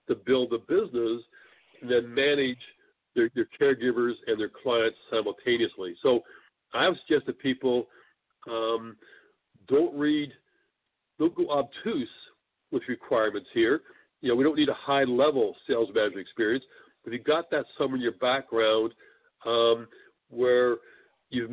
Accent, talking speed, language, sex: American, 145 wpm, English, male